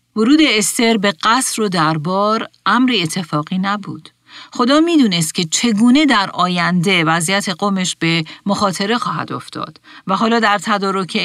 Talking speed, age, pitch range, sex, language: 135 wpm, 40-59, 160-215 Hz, female, Persian